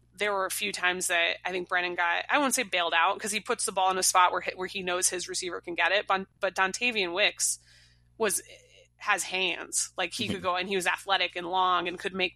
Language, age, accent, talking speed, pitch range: English, 20-39, American, 250 wpm, 175-200 Hz